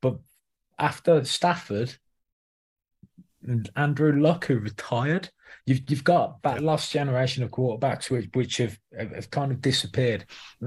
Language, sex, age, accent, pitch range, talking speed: English, male, 20-39, British, 115-140 Hz, 135 wpm